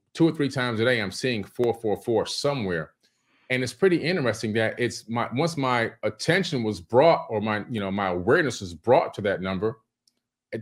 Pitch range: 110-135 Hz